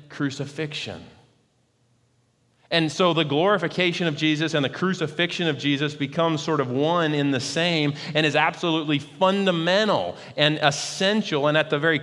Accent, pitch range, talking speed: American, 125-155 Hz, 145 wpm